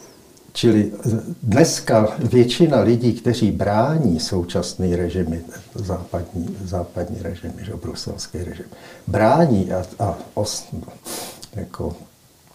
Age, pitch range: 60-79, 95-125 Hz